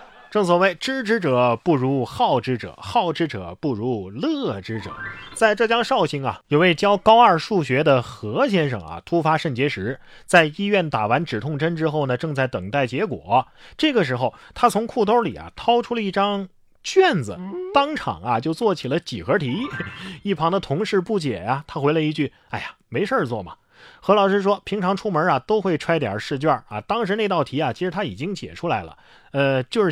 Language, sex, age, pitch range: Chinese, male, 30-49, 140-210 Hz